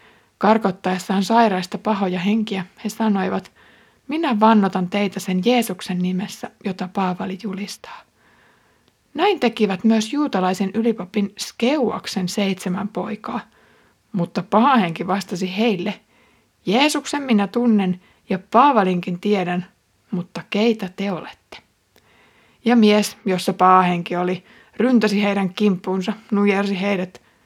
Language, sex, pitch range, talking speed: Finnish, female, 185-220 Hz, 105 wpm